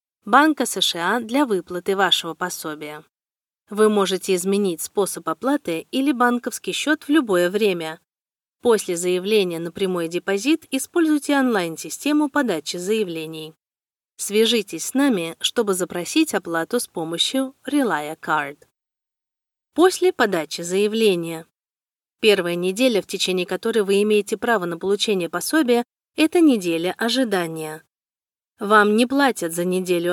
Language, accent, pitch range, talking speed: Russian, native, 175-250 Hz, 115 wpm